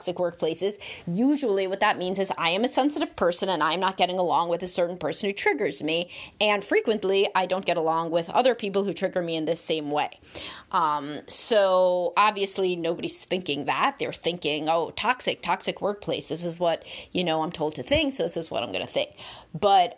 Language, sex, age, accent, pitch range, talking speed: English, female, 30-49, American, 175-235 Hz, 210 wpm